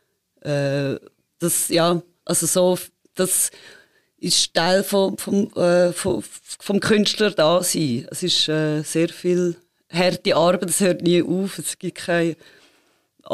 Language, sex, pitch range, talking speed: German, female, 160-185 Hz, 125 wpm